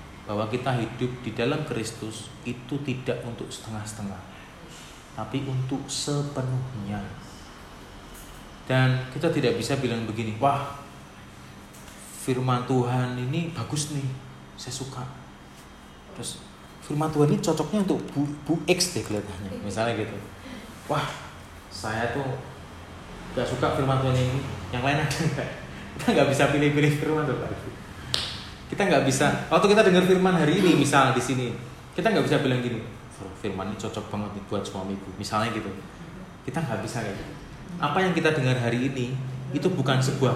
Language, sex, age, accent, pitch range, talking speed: Indonesian, male, 30-49, native, 110-145 Hz, 145 wpm